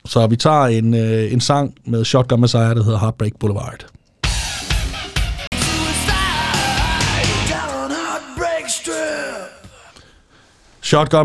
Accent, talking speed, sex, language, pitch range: native, 80 wpm, male, Danish, 120-145 Hz